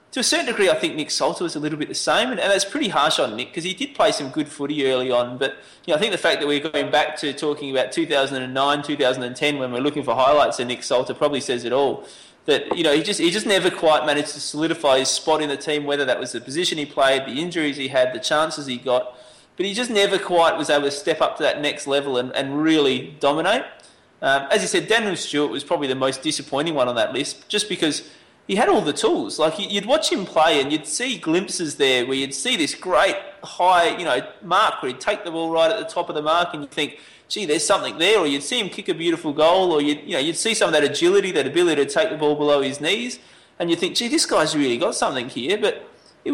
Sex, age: male, 20-39